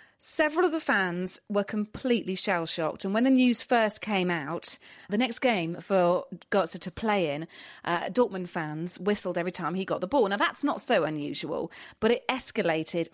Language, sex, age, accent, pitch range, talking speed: English, female, 30-49, British, 185-250 Hz, 185 wpm